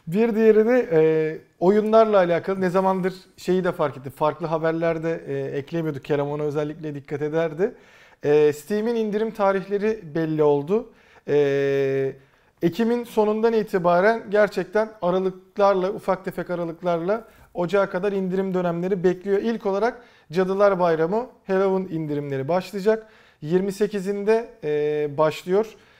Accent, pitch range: native, 160-210 Hz